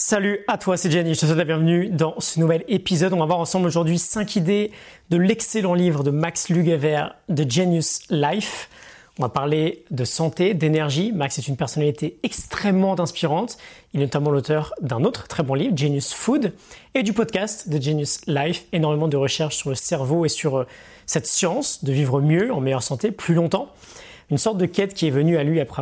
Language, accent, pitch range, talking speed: French, French, 145-195 Hz, 200 wpm